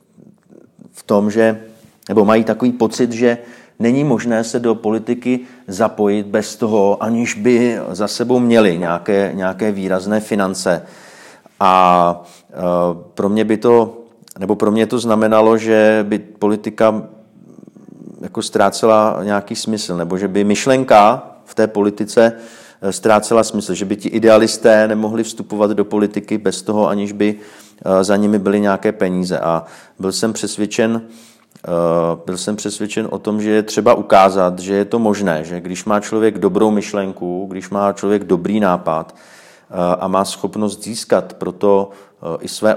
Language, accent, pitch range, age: Czech, native, 95-110 Hz, 40-59